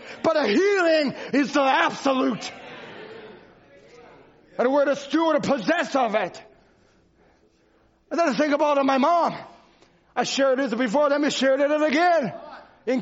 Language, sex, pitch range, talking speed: English, male, 275-345 Hz, 150 wpm